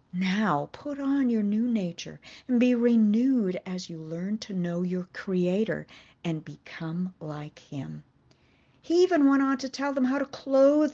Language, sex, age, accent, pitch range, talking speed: English, female, 50-69, American, 160-230 Hz, 165 wpm